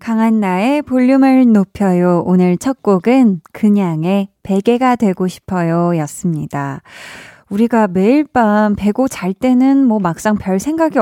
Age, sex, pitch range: 20-39, female, 185-245 Hz